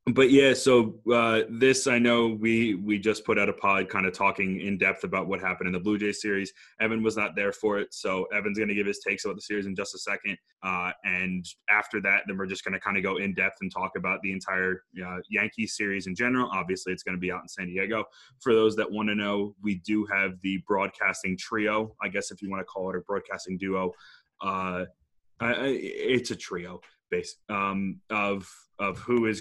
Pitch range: 95-110 Hz